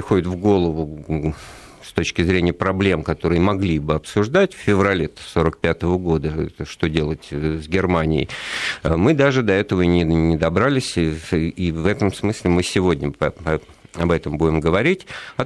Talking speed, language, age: 150 wpm, Russian, 50-69